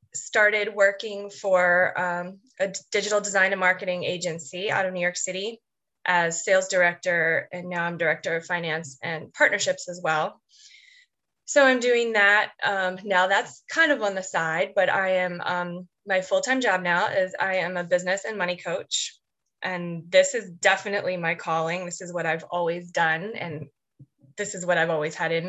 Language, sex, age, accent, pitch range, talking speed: English, female, 20-39, American, 170-210 Hz, 180 wpm